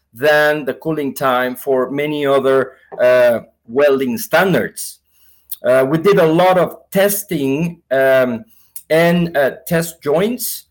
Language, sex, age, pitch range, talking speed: English, male, 50-69, 140-185 Hz, 125 wpm